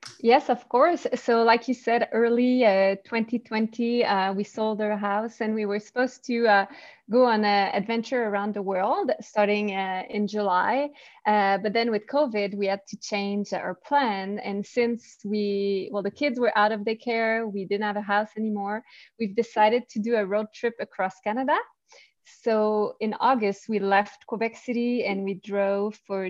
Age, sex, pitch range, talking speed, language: 20-39, female, 200-230 Hz, 180 wpm, English